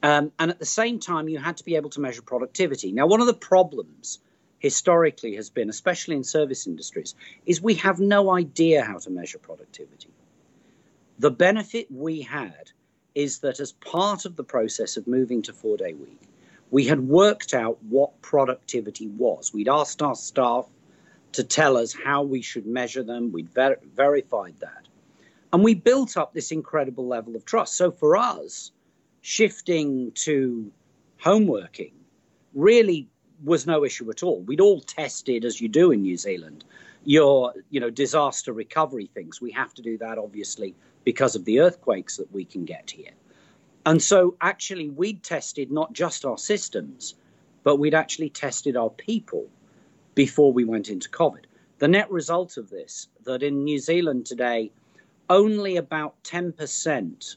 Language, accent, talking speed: English, British, 165 wpm